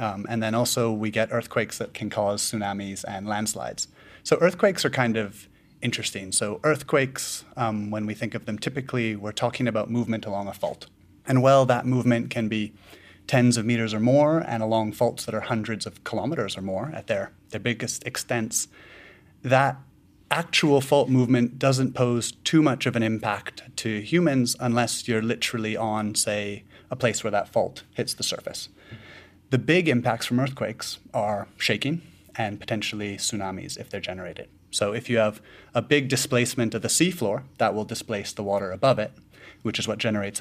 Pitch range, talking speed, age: 105-125 Hz, 180 wpm, 30-49